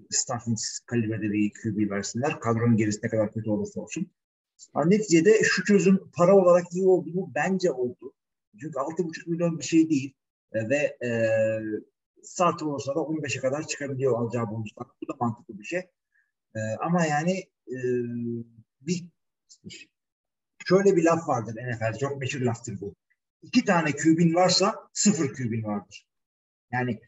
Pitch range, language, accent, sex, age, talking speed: 120-185 Hz, Turkish, native, male, 50-69, 145 wpm